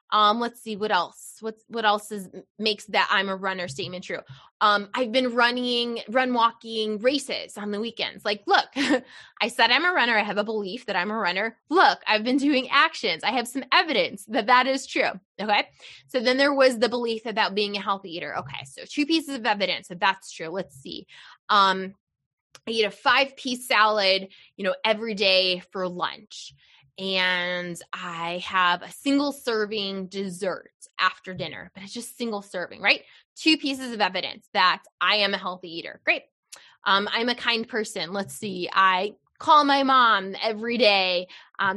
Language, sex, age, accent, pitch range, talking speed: English, female, 20-39, American, 190-255 Hz, 195 wpm